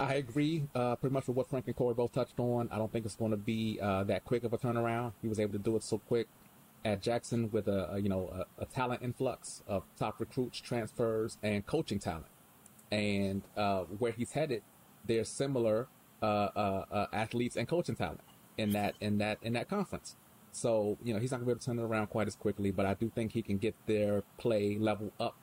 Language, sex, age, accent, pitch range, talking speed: English, male, 30-49, American, 100-120 Hz, 240 wpm